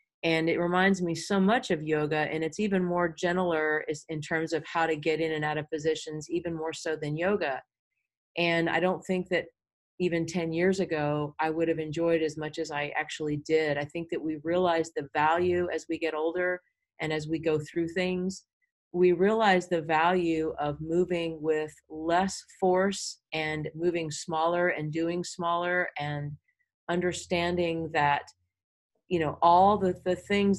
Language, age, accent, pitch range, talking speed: English, 40-59, American, 160-185 Hz, 175 wpm